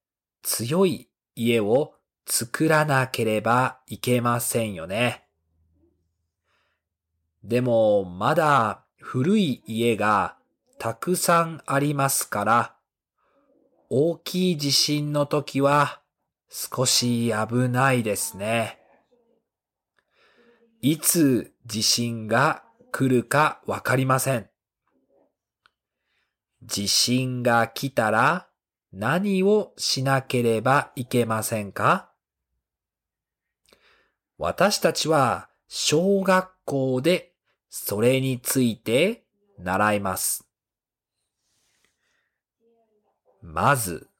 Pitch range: 115-170 Hz